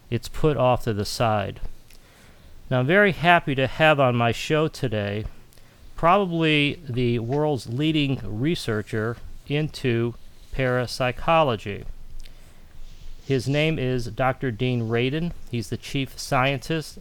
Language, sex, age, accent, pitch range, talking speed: English, male, 40-59, American, 115-140 Hz, 115 wpm